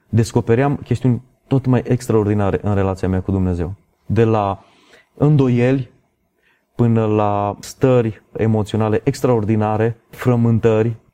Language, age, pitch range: Romanian, 30-49, 105-130 Hz